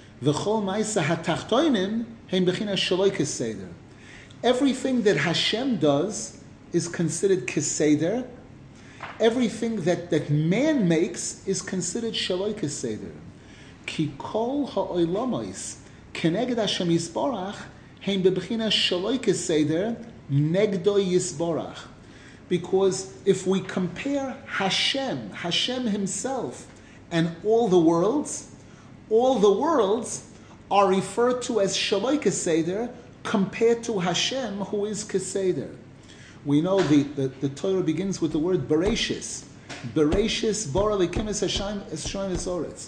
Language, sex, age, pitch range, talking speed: English, male, 40-59, 155-205 Hz, 75 wpm